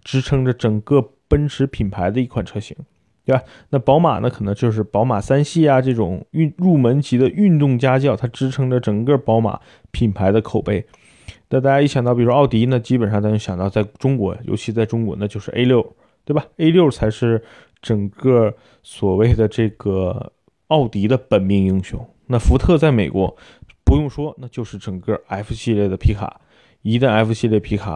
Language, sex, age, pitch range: Chinese, male, 20-39, 100-125 Hz